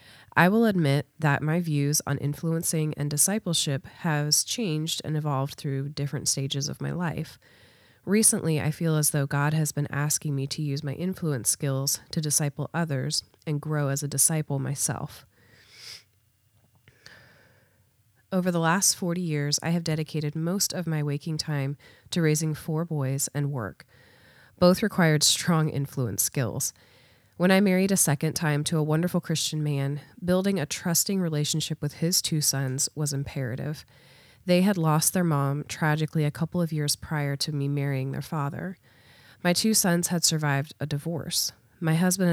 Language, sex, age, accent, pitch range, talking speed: English, female, 30-49, American, 140-165 Hz, 160 wpm